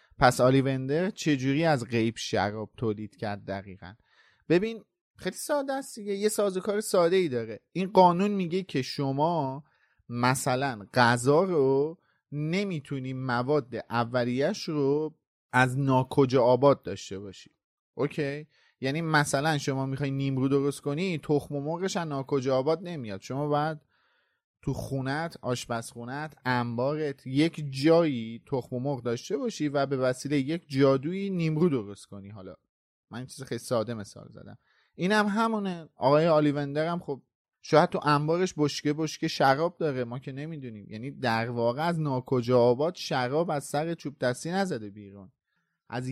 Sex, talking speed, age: male, 135 wpm, 30-49